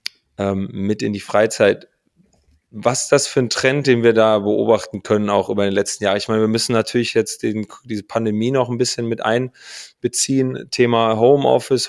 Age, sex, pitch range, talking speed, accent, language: 30-49, male, 110-120 Hz, 175 wpm, German, German